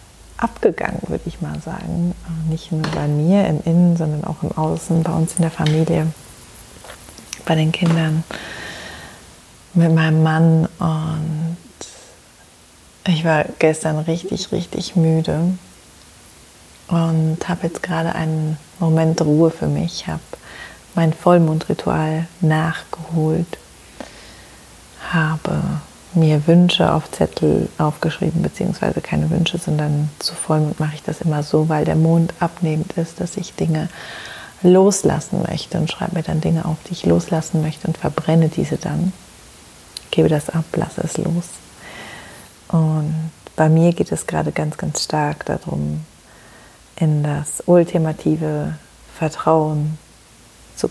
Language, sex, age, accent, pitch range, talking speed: German, female, 30-49, German, 155-170 Hz, 130 wpm